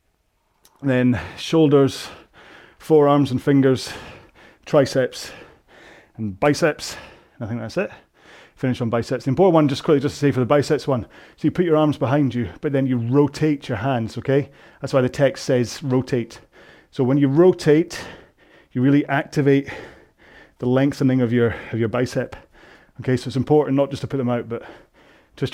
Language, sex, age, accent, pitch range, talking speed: English, male, 30-49, British, 120-145 Hz, 170 wpm